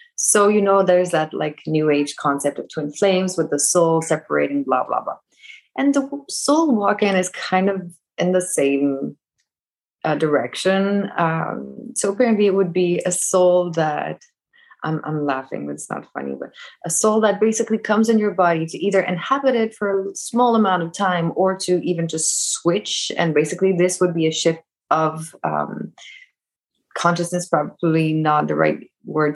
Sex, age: female, 20-39